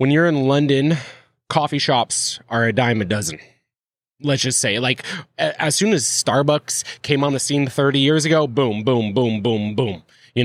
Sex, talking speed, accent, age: male, 185 wpm, American, 20-39